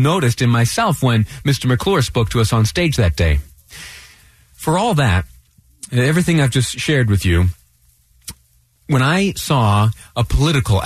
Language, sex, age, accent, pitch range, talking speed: English, male, 30-49, American, 95-130 Hz, 150 wpm